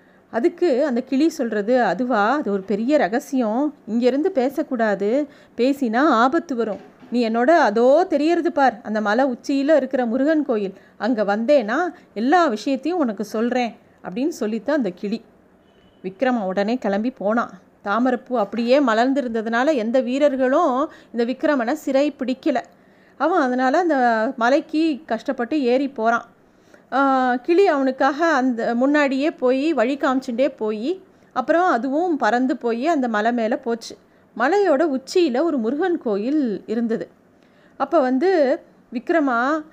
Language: Tamil